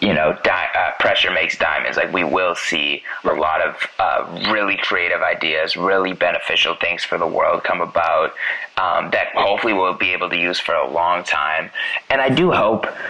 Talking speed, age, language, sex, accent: 190 wpm, 20-39, English, male, American